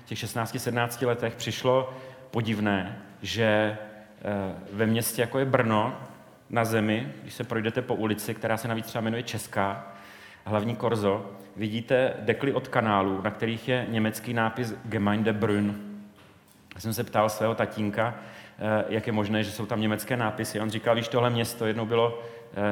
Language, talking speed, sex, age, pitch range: Czech, 160 wpm, male, 40-59, 105-120 Hz